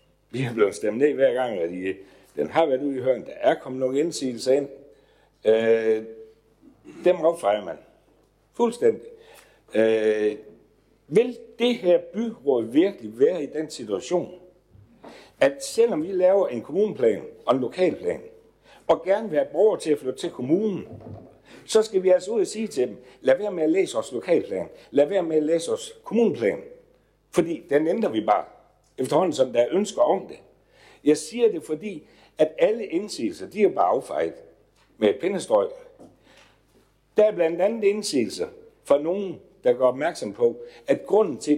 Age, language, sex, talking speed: 60-79, Danish, male, 170 wpm